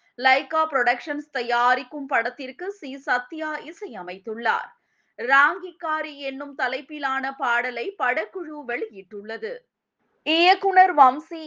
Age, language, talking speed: 20-39, Tamil, 80 wpm